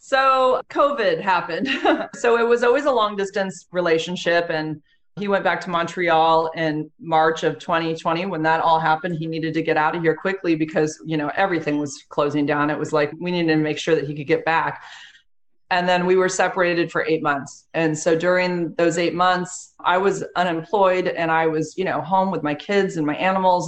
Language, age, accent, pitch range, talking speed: English, 30-49, American, 150-175 Hz, 210 wpm